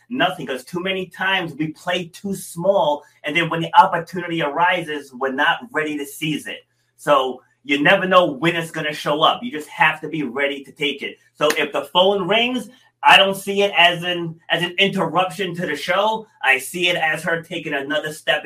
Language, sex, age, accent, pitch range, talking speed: English, male, 30-49, American, 150-200 Hz, 210 wpm